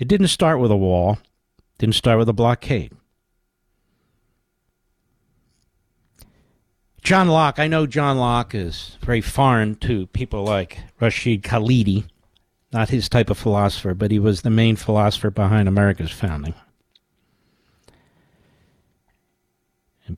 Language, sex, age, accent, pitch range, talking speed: English, male, 50-69, American, 105-135 Hz, 120 wpm